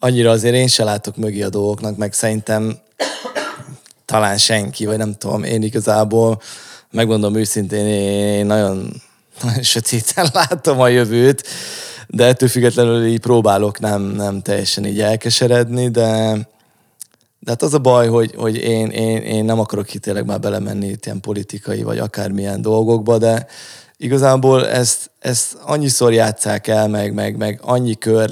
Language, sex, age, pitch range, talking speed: Hungarian, male, 20-39, 105-120 Hz, 145 wpm